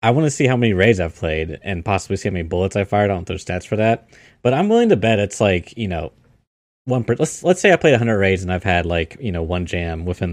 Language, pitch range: English, 95-125 Hz